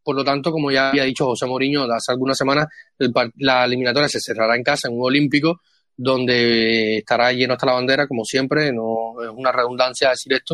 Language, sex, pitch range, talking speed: Spanish, male, 130-165 Hz, 205 wpm